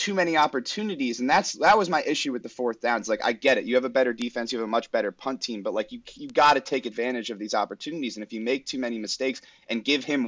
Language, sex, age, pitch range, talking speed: English, male, 30-49, 105-130 Hz, 290 wpm